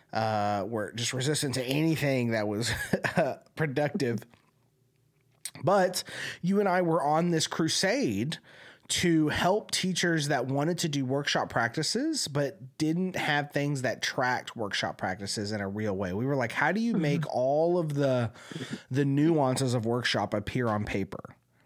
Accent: American